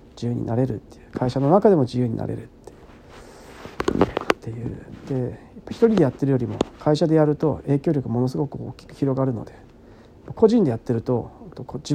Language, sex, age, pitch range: Japanese, male, 40-59, 120-155 Hz